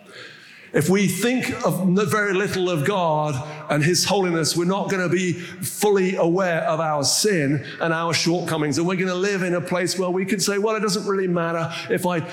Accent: British